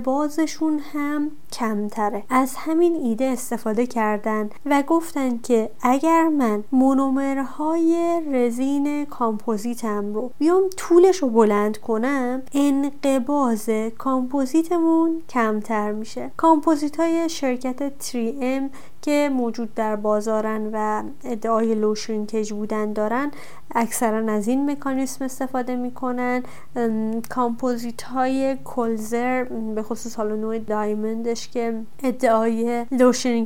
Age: 30-49